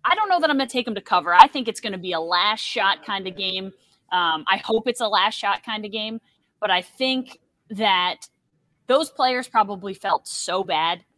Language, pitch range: English, 185-230 Hz